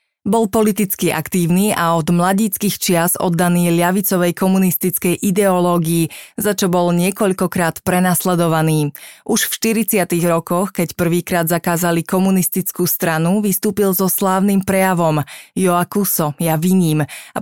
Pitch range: 170-190 Hz